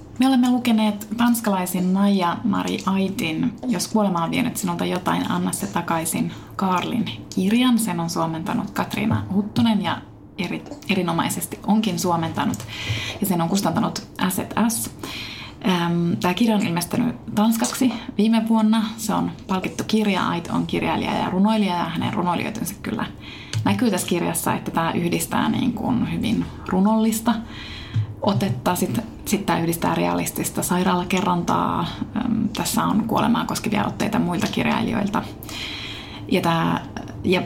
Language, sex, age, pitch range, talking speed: Finnish, female, 20-39, 165-220 Hz, 130 wpm